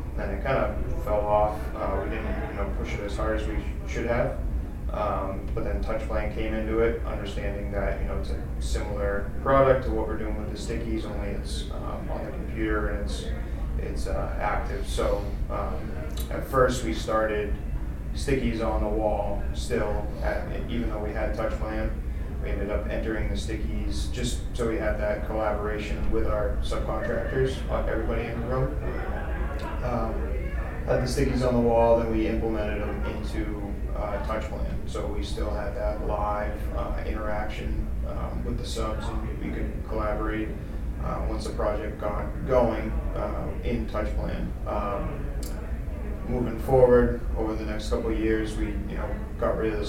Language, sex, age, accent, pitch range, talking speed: English, male, 30-49, American, 75-110 Hz, 175 wpm